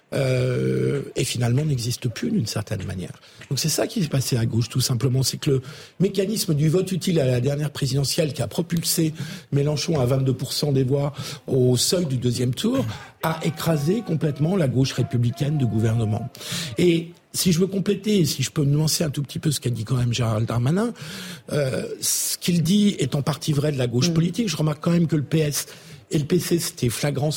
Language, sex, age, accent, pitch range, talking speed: French, male, 50-69, French, 130-165 Hz, 205 wpm